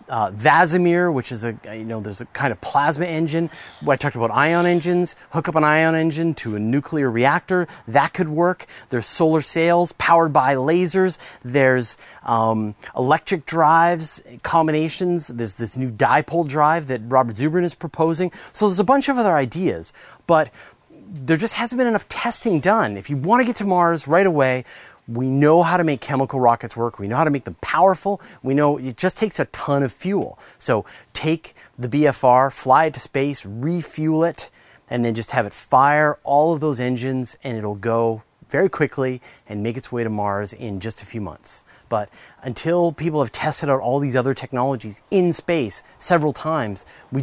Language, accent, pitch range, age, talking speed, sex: English, American, 125-170 Hz, 30-49, 190 wpm, male